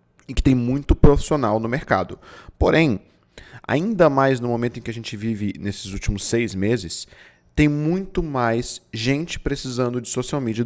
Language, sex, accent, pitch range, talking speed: Portuguese, male, Brazilian, 110-150 Hz, 165 wpm